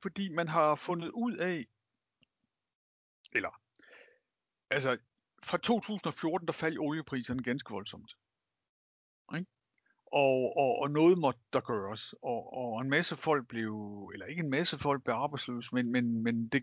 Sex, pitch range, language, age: male, 115-165 Hz, Danish, 60-79